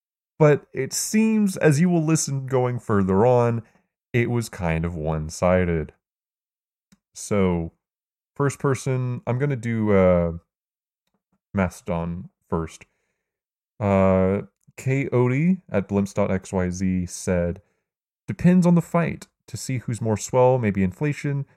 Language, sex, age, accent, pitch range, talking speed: English, male, 30-49, American, 95-135 Hz, 110 wpm